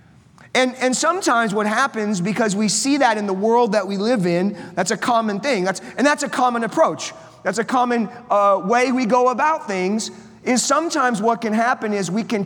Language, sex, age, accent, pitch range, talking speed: English, male, 30-49, American, 205-250 Hz, 200 wpm